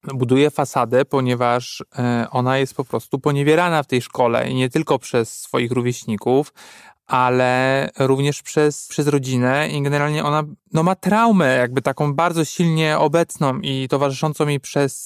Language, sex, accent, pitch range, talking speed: Polish, male, native, 135-165 Hz, 145 wpm